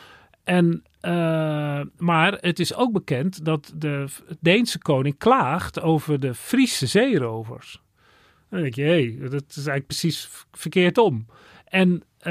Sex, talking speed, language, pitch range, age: male, 130 wpm, Dutch, 130-170 Hz, 40-59